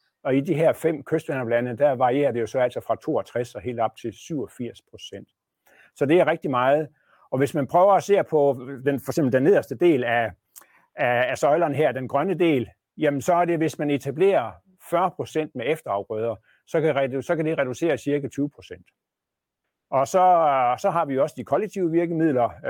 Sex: male